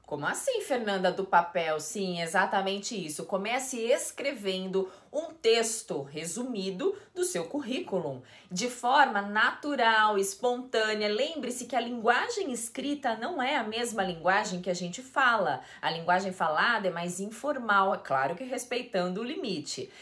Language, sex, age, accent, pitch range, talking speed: Portuguese, female, 20-39, Brazilian, 190-260 Hz, 140 wpm